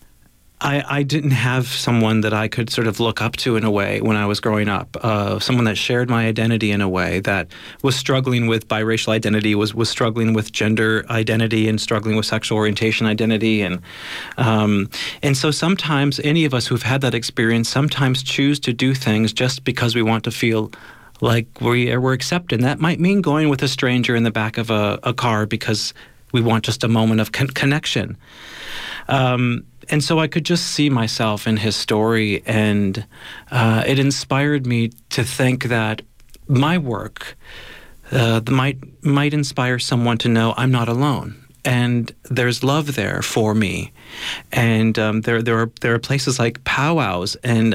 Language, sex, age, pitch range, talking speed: English, male, 40-59, 110-130 Hz, 185 wpm